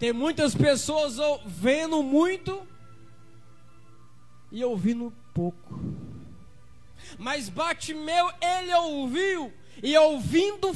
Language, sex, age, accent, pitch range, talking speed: Portuguese, male, 20-39, Brazilian, 235-335 Hz, 85 wpm